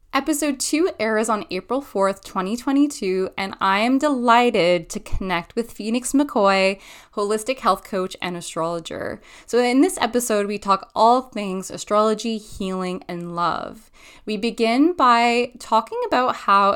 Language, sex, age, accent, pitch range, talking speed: English, female, 10-29, American, 180-240 Hz, 140 wpm